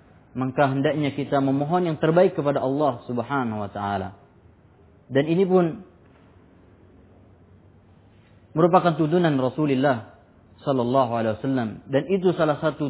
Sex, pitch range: male, 115-160 Hz